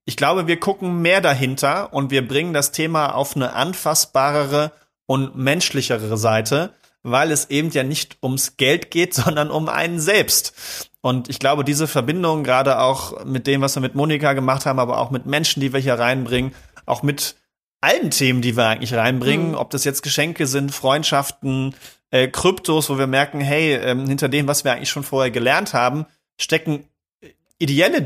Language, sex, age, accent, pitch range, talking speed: German, male, 30-49, German, 125-150 Hz, 180 wpm